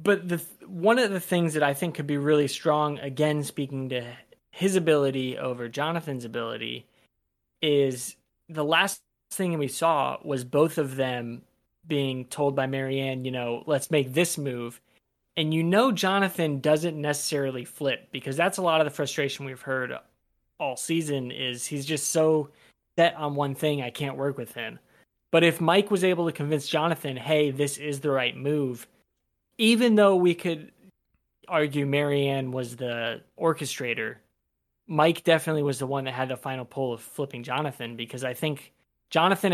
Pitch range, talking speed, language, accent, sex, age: 135-165 Hz, 170 wpm, English, American, male, 20-39